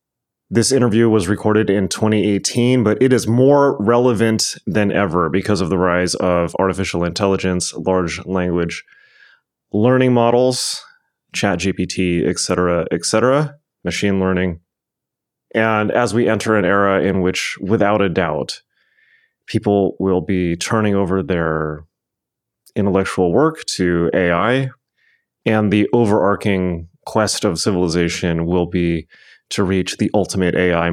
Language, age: English, 30-49